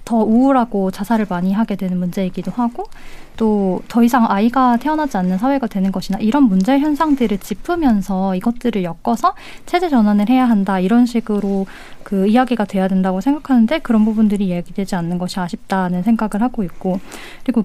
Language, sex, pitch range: Korean, female, 195-260 Hz